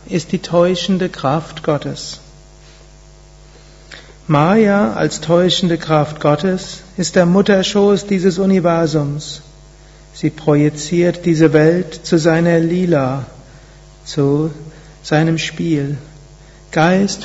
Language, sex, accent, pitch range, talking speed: German, male, German, 150-175 Hz, 90 wpm